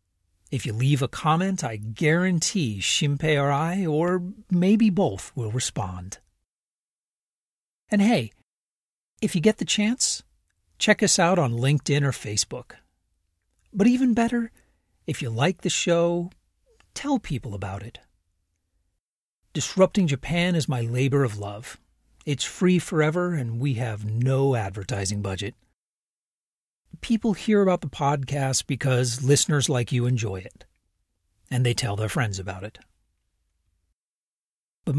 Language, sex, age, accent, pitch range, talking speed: English, male, 40-59, American, 100-170 Hz, 130 wpm